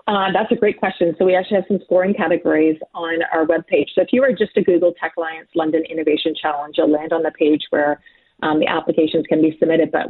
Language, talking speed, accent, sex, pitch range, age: English, 230 wpm, American, female, 160-185 Hz, 30-49